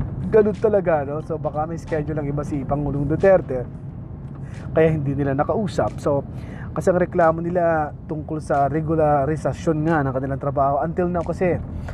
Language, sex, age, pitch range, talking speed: Filipino, male, 20-39, 135-160 Hz, 155 wpm